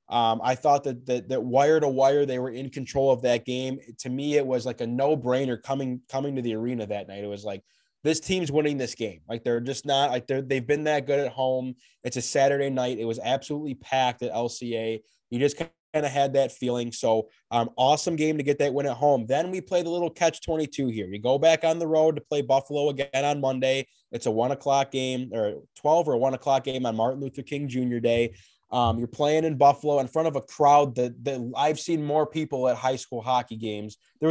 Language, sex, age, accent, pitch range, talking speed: English, male, 20-39, American, 125-150 Hz, 240 wpm